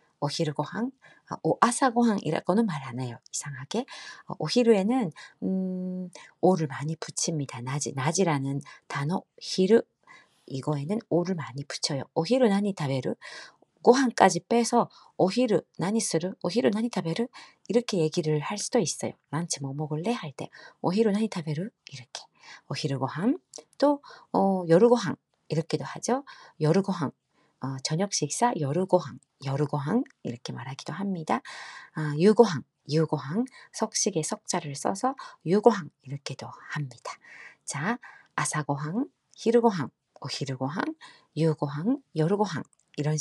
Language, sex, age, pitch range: Korean, female, 40-59, 150-230 Hz